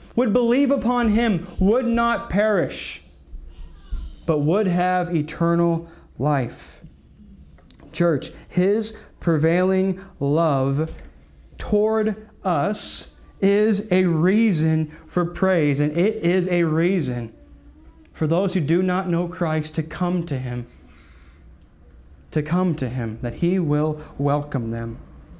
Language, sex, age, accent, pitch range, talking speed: English, male, 30-49, American, 135-185 Hz, 115 wpm